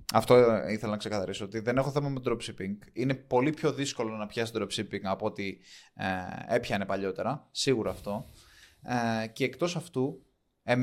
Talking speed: 170 wpm